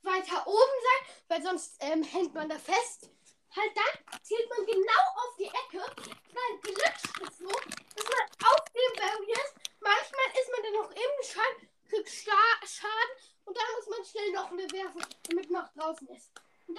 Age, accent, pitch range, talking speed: 10-29, German, 355-445 Hz, 180 wpm